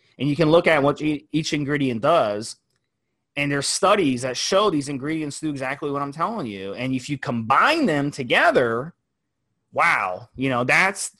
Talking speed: 170 wpm